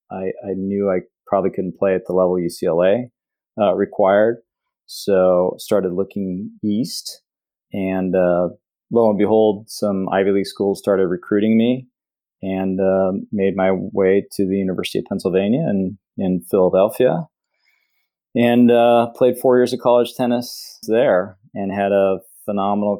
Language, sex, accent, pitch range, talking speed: English, male, American, 95-105 Hz, 145 wpm